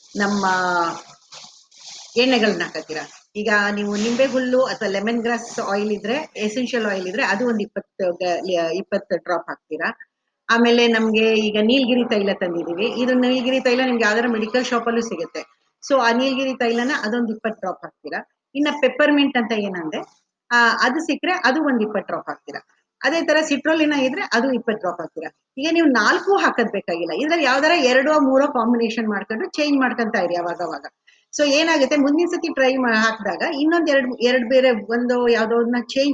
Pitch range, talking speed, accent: 210-275 Hz, 100 wpm, Indian